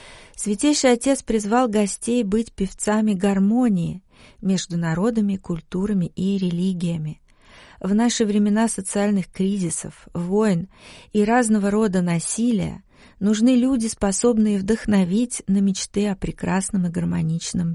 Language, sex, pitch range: Russian, female, 180-220 Hz